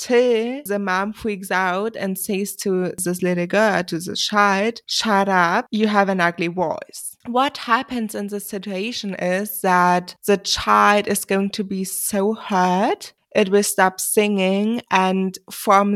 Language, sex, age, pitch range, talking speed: English, female, 20-39, 180-205 Hz, 160 wpm